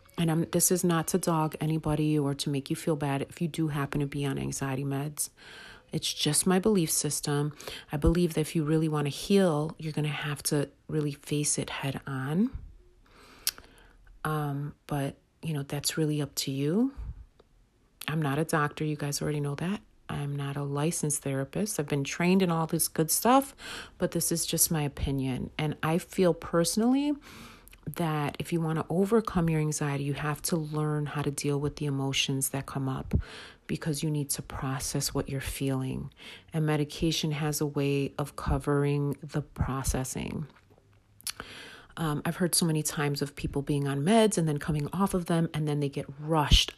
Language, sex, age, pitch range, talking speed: English, female, 40-59, 140-160 Hz, 190 wpm